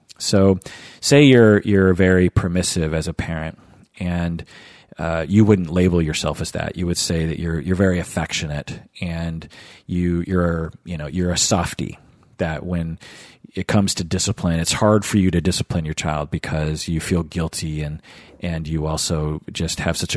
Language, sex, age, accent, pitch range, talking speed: English, male, 40-59, American, 85-105 Hz, 175 wpm